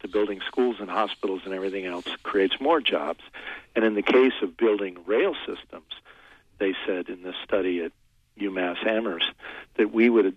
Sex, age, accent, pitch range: male, 40-59, American, 90-105 Hz